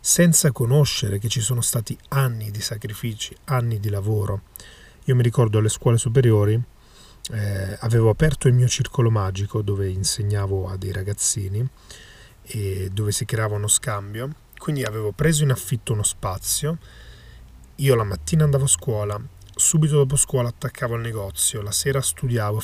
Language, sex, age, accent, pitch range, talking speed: Italian, male, 30-49, native, 105-130 Hz, 155 wpm